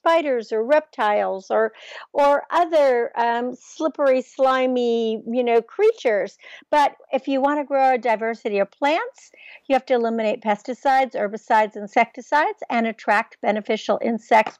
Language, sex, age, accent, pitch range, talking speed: English, female, 60-79, American, 215-275 Hz, 135 wpm